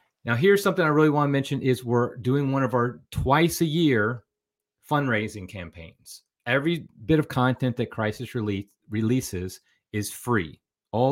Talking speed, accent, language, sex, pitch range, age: 160 wpm, American, English, male, 105-135 Hz, 30-49